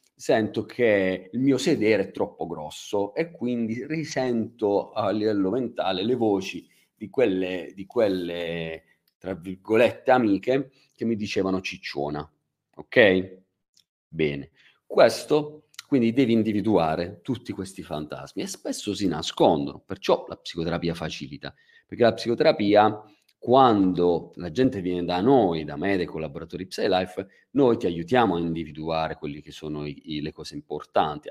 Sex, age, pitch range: male, 40-59, 85-110 Hz